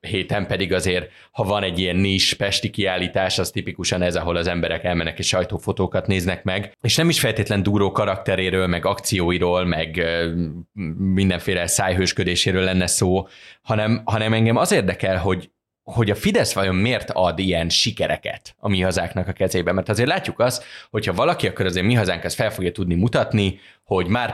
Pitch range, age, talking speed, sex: 90-105 Hz, 20-39, 170 wpm, male